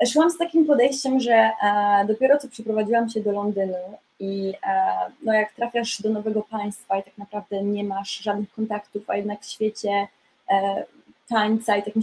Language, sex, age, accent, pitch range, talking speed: Polish, female, 20-39, native, 205-235 Hz, 175 wpm